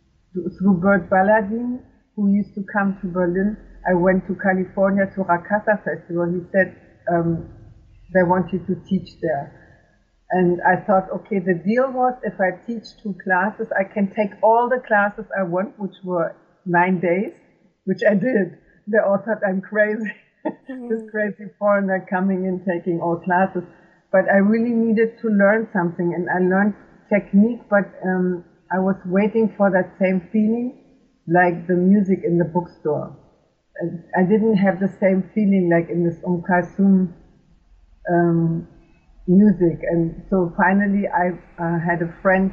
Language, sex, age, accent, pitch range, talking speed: English, female, 50-69, German, 175-205 Hz, 155 wpm